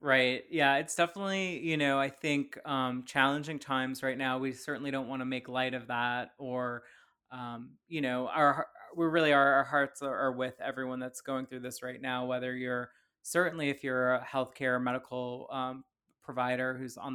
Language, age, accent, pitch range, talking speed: English, 20-39, American, 130-145 Hz, 190 wpm